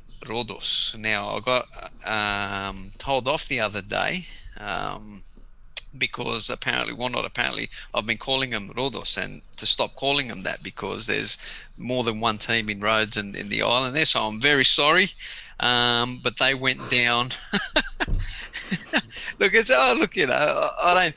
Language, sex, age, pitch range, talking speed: English, male, 30-49, 115-140 Hz, 160 wpm